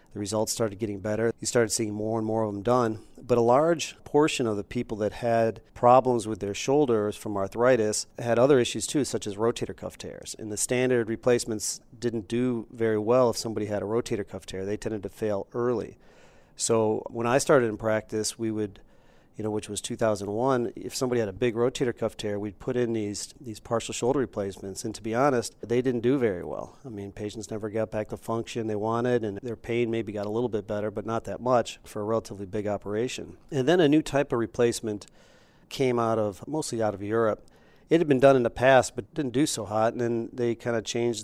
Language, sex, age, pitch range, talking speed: English, male, 40-59, 105-120 Hz, 225 wpm